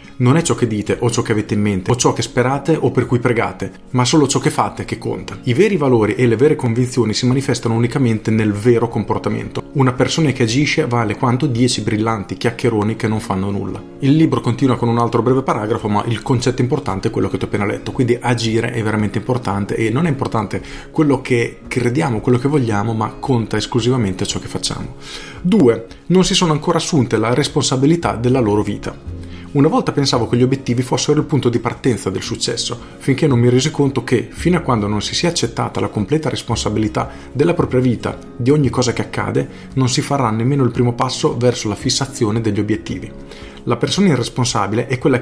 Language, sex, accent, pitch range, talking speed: Italian, male, native, 110-130 Hz, 210 wpm